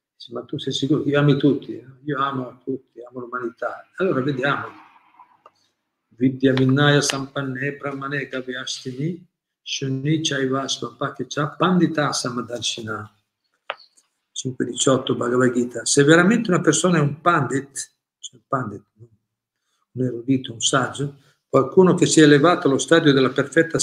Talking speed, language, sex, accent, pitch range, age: 125 wpm, Italian, male, native, 125-155 Hz, 50-69